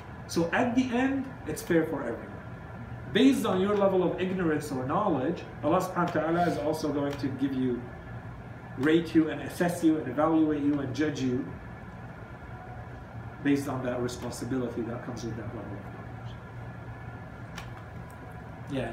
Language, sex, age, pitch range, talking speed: English, male, 40-59, 120-150 Hz, 155 wpm